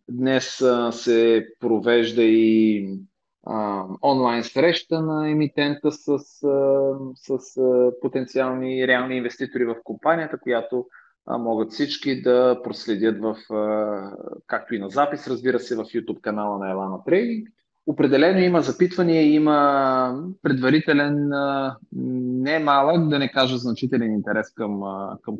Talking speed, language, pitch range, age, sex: 110 wpm, Bulgarian, 120-145 Hz, 30-49, male